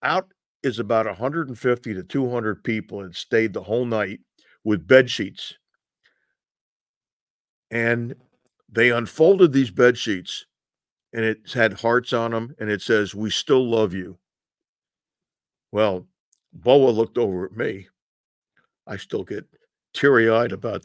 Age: 50-69